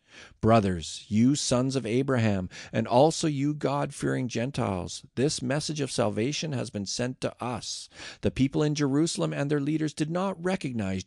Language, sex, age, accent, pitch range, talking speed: English, male, 40-59, American, 110-145 Hz, 165 wpm